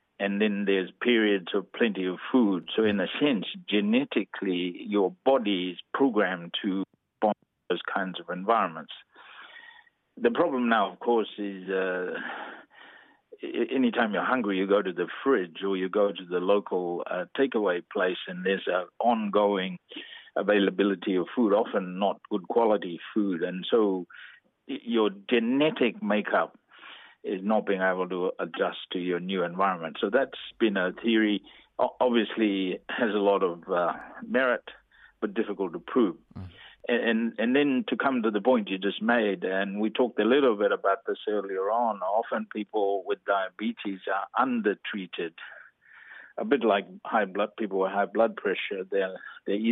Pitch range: 95-115 Hz